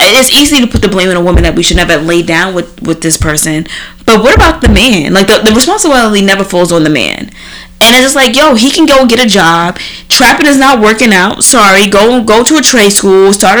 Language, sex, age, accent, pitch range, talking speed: English, female, 20-39, American, 175-250 Hz, 250 wpm